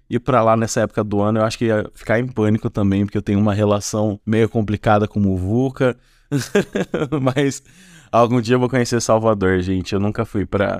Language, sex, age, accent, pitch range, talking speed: Portuguese, male, 20-39, Brazilian, 100-130 Hz, 205 wpm